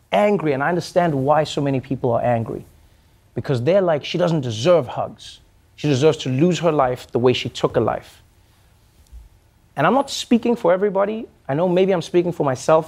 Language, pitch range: English, 130-200 Hz